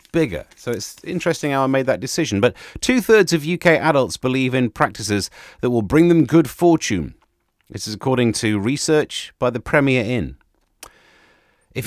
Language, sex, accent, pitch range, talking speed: English, male, British, 105-160 Hz, 165 wpm